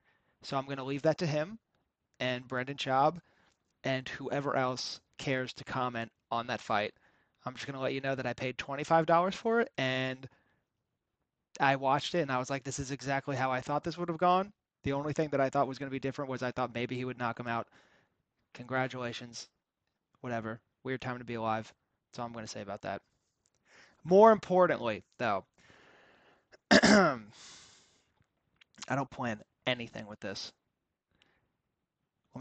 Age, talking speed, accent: 20-39, 180 wpm, American